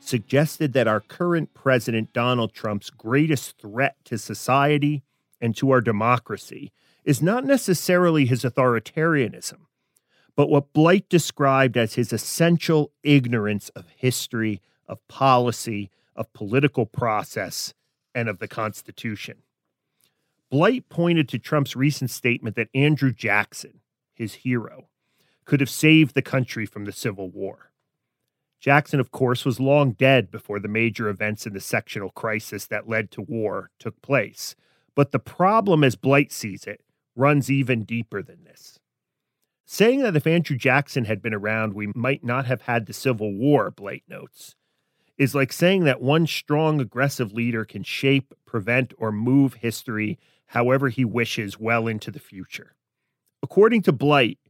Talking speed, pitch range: 145 wpm, 115-145 Hz